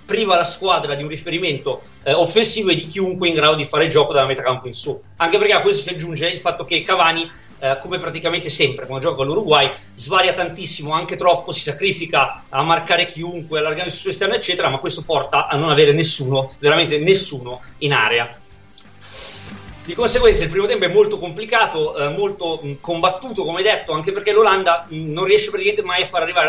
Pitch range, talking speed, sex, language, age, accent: 145-190 Hz, 200 wpm, male, Italian, 30-49, native